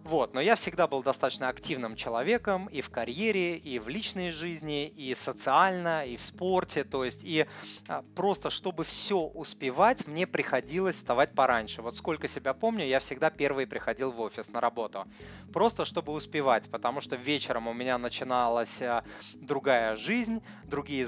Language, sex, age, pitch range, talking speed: Russian, male, 20-39, 130-180 Hz, 155 wpm